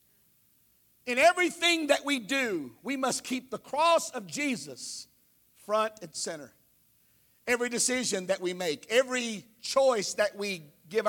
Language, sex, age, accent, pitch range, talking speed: English, male, 50-69, American, 230-315 Hz, 135 wpm